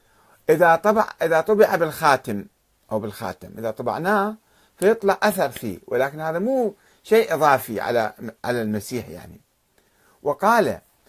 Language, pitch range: Arabic, 115-190 Hz